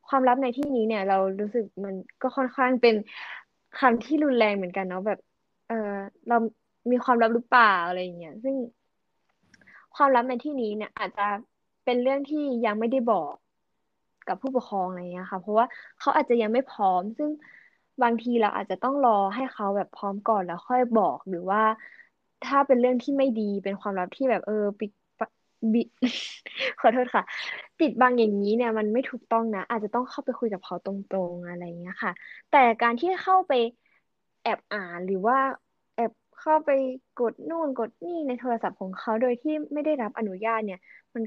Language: Thai